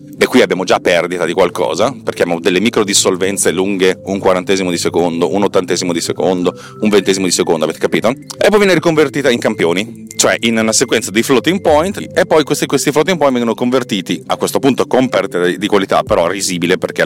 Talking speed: 205 wpm